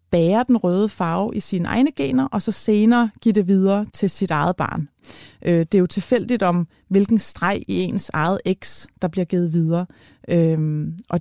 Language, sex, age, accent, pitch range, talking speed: Danish, female, 30-49, native, 170-220 Hz, 180 wpm